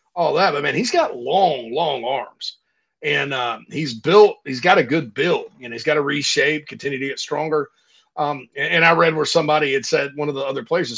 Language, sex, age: English, male, 40-59